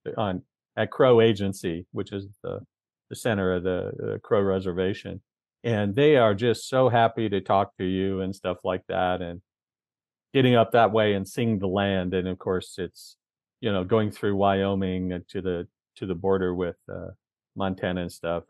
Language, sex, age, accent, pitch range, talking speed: English, male, 50-69, American, 95-115 Hz, 180 wpm